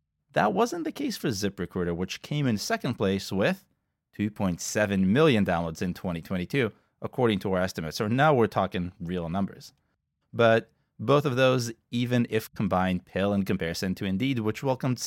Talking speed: 165 wpm